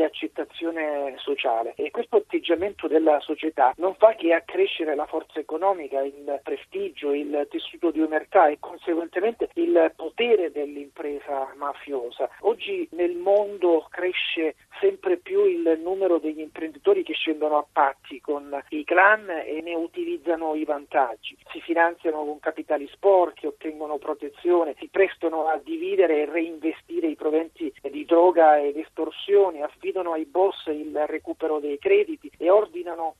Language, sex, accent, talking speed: Italian, male, native, 135 wpm